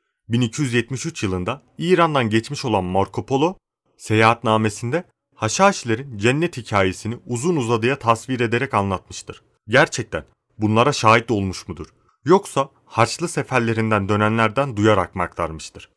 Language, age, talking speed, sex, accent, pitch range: Turkish, 30-49, 105 wpm, male, native, 105-135 Hz